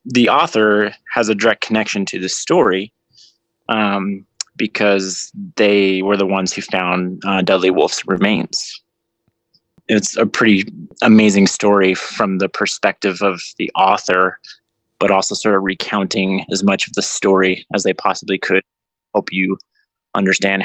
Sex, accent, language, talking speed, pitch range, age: male, American, English, 140 wpm, 95-115 Hz, 20-39